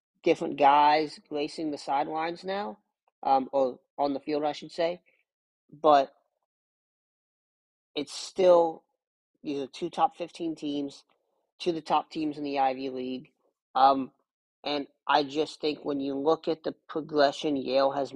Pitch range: 135-160 Hz